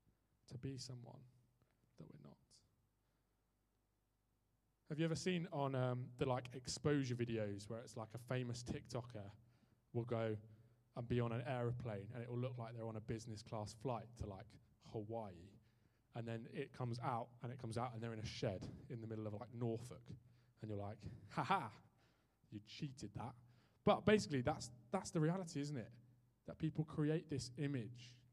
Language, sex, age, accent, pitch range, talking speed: English, male, 20-39, British, 115-140 Hz, 180 wpm